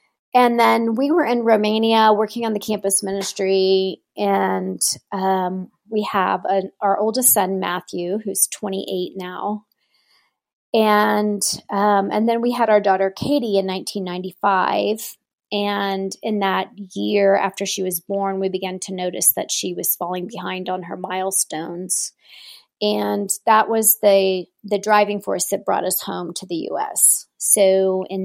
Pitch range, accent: 185-210 Hz, American